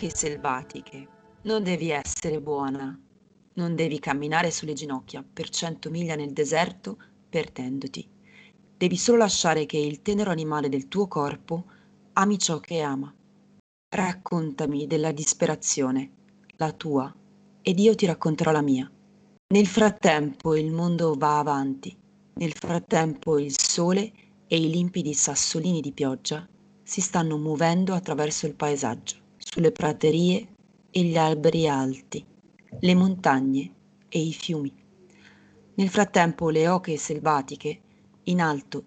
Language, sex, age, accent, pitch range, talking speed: Italian, female, 30-49, native, 150-195 Hz, 125 wpm